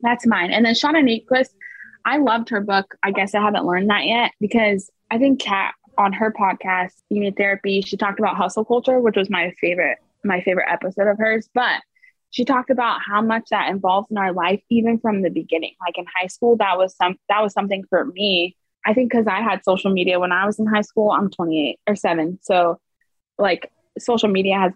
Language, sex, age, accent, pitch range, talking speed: English, female, 20-39, American, 190-235 Hz, 215 wpm